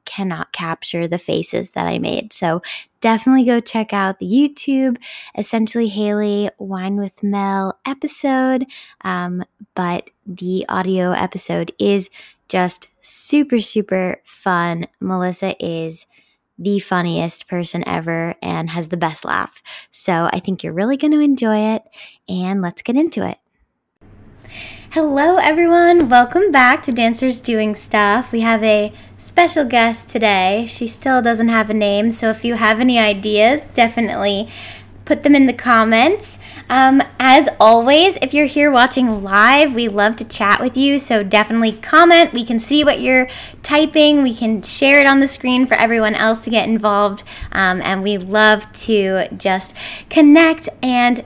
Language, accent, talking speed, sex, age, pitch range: English, American, 155 wpm, female, 10-29, 200-260 Hz